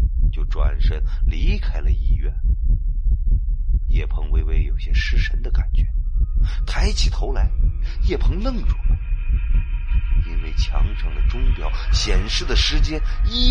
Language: Chinese